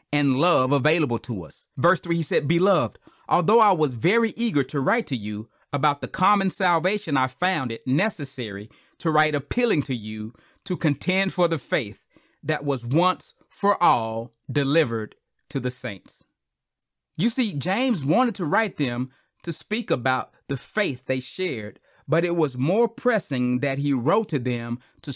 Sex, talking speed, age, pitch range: male, 170 wpm, 30-49, 130-190 Hz